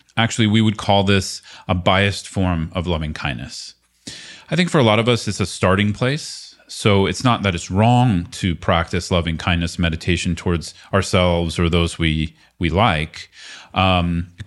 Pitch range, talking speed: 85-105 Hz, 175 wpm